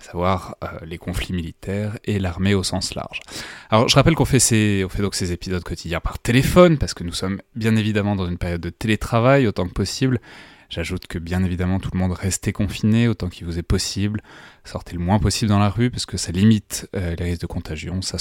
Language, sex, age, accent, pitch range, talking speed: French, male, 20-39, French, 90-115 Hz, 220 wpm